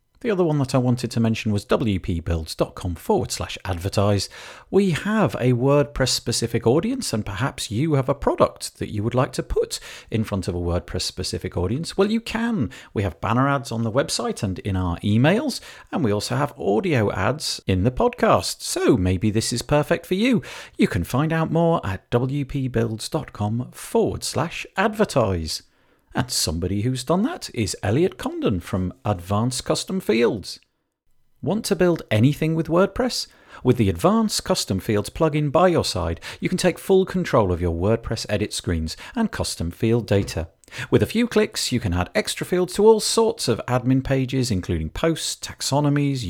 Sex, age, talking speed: male, 50-69, 180 wpm